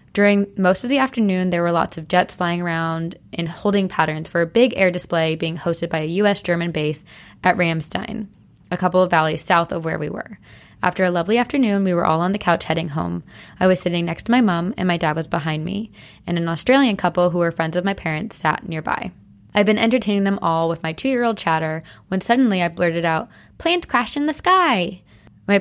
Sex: female